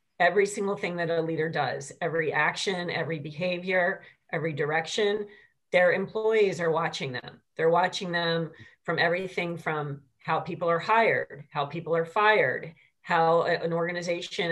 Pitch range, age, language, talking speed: 165-205 Hz, 40-59, English, 145 wpm